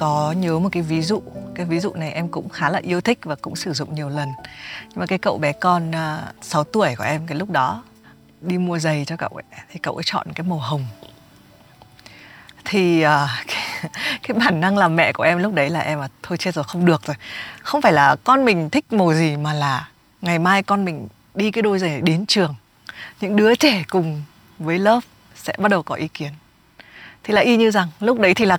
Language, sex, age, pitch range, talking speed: Vietnamese, female, 20-39, 150-195 Hz, 235 wpm